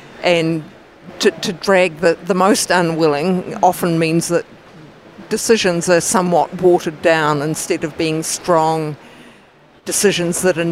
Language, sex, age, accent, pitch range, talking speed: English, female, 50-69, Australian, 160-180 Hz, 130 wpm